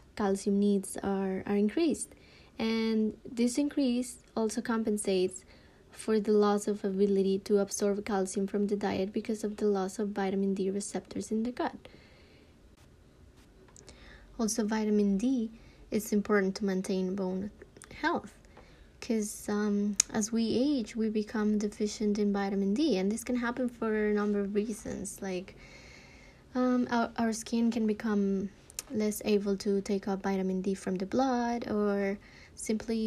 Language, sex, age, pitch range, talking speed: English, female, 20-39, 200-225 Hz, 145 wpm